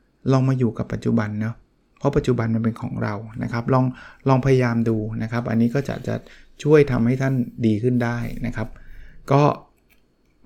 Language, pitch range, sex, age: Thai, 120-150 Hz, male, 20-39